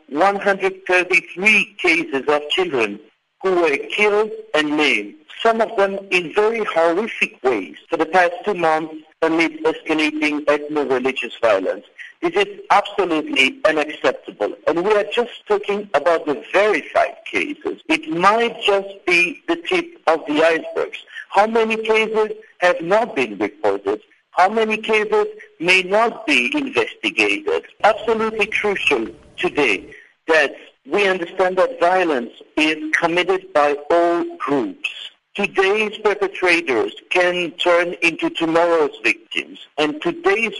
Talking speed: 125 wpm